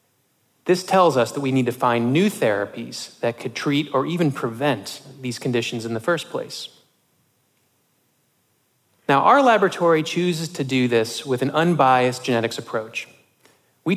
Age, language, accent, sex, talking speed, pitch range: 30-49, English, American, male, 150 wpm, 120-155 Hz